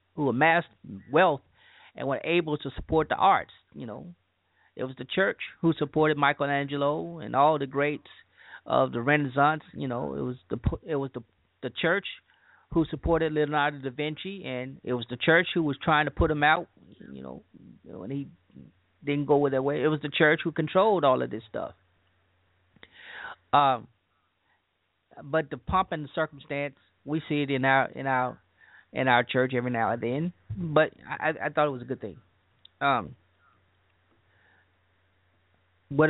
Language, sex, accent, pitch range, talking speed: English, male, American, 120-160 Hz, 175 wpm